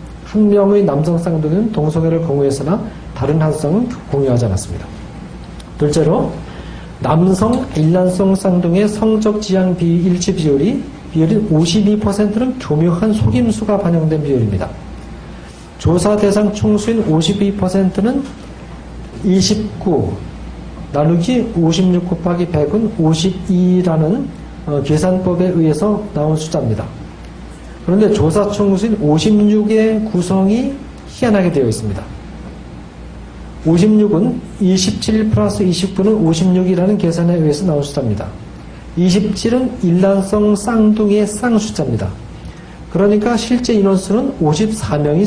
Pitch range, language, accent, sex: 160-210 Hz, Korean, native, male